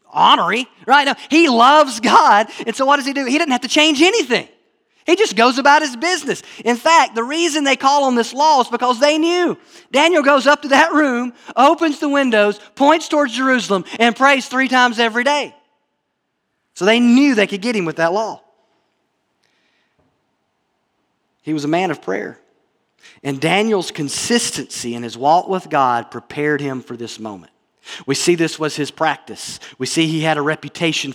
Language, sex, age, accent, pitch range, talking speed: English, male, 40-59, American, 160-255 Hz, 185 wpm